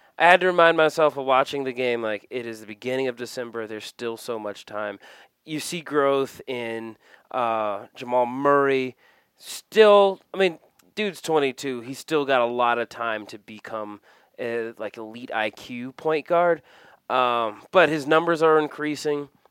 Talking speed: 165 wpm